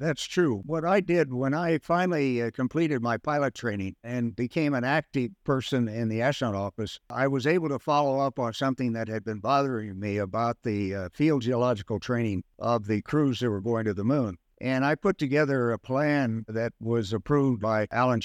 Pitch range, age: 115-145 Hz, 60-79